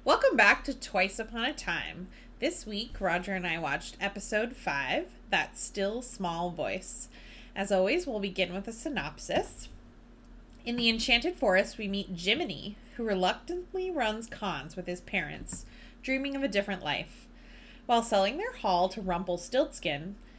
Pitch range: 185-240 Hz